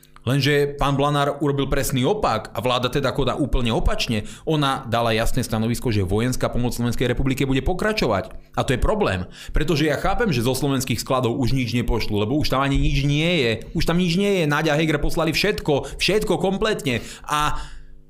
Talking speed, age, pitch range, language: 190 wpm, 30-49, 120-160 Hz, Slovak